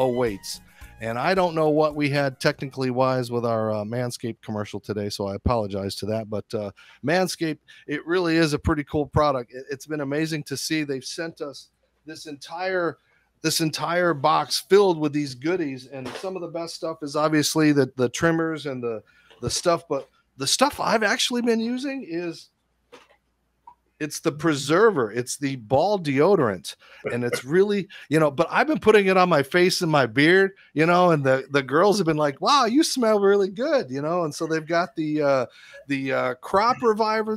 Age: 40-59